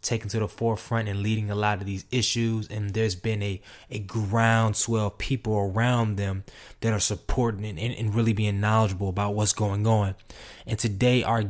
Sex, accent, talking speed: male, American, 190 wpm